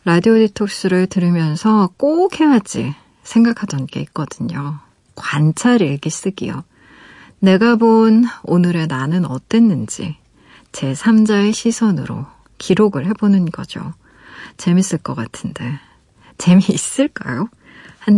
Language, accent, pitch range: Korean, native, 170-225 Hz